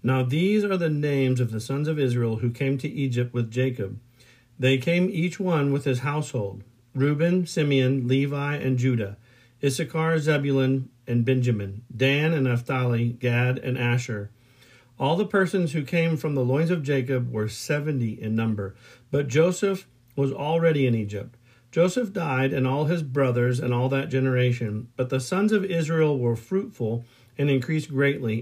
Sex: male